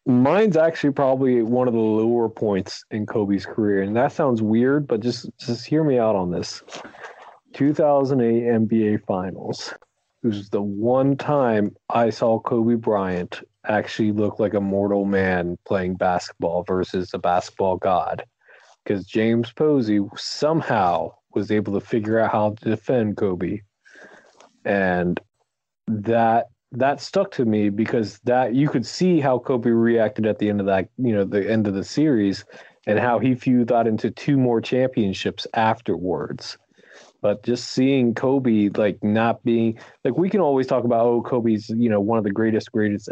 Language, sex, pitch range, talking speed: English, male, 105-125 Hz, 165 wpm